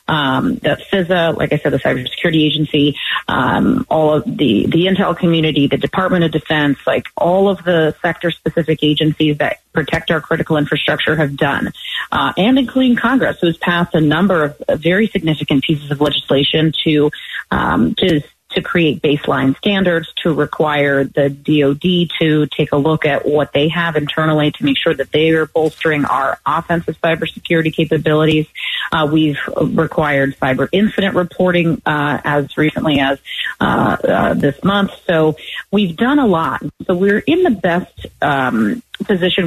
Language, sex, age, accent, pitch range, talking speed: English, female, 30-49, American, 150-185 Hz, 160 wpm